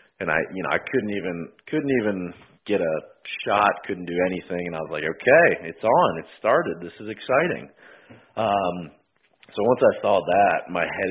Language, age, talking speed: English, 40-59, 190 wpm